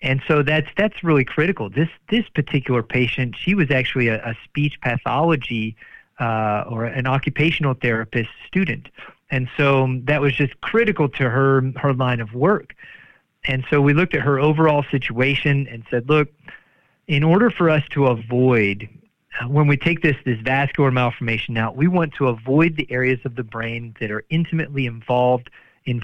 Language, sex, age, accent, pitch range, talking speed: English, male, 40-59, American, 125-150 Hz, 170 wpm